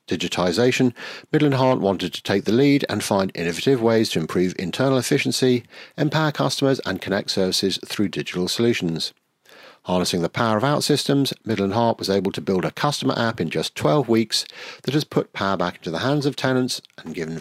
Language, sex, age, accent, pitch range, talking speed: English, male, 50-69, British, 95-130 Hz, 190 wpm